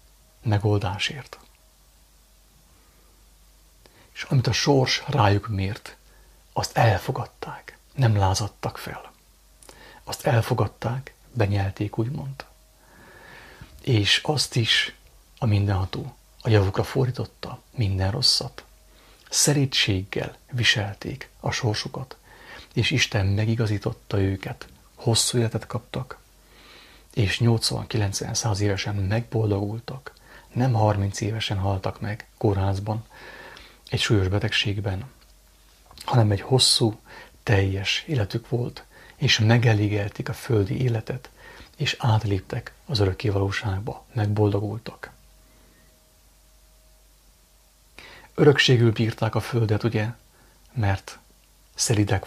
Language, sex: English, male